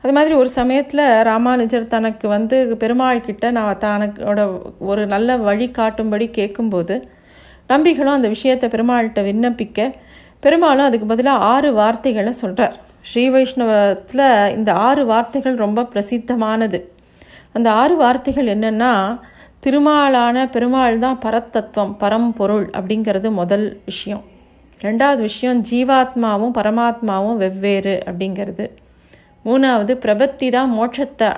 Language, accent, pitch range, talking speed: Tamil, native, 205-250 Hz, 105 wpm